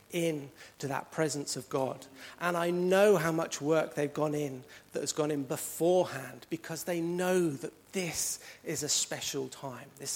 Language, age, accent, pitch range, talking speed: English, 40-59, British, 130-175 Hz, 175 wpm